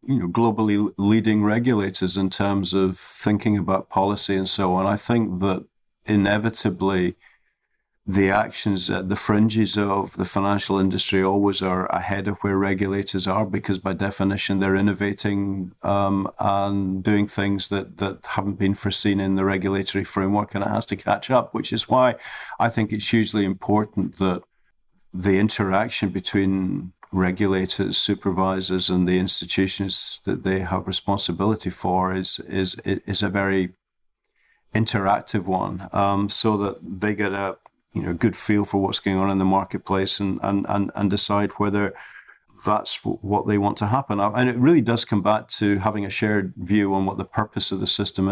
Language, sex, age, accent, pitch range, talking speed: English, male, 50-69, British, 95-105 Hz, 170 wpm